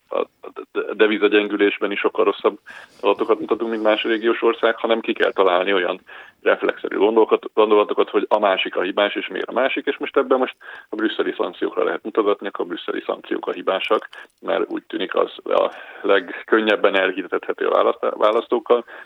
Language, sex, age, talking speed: Hungarian, male, 30-49, 155 wpm